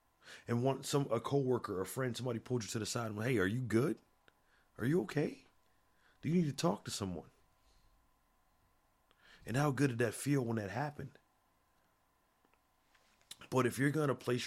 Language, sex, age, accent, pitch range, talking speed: English, male, 30-49, American, 105-130 Hz, 185 wpm